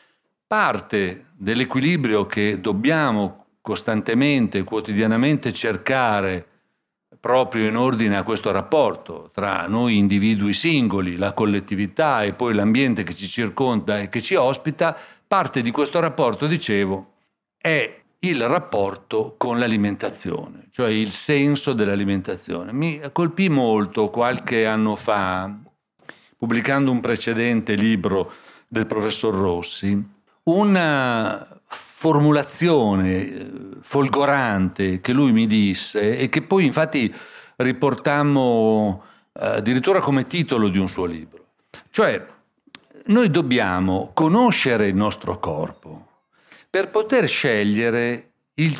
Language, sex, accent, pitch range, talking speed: Italian, male, native, 105-145 Hz, 105 wpm